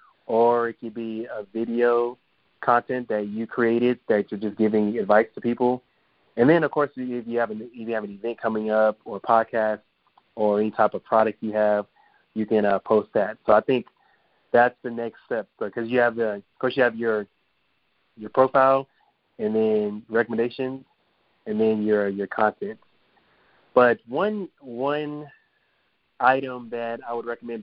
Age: 20-39